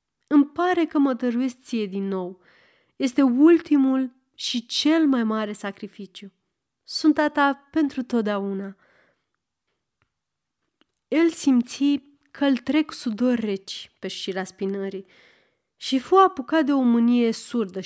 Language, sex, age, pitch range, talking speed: Romanian, female, 30-49, 195-280 Hz, 120 wpm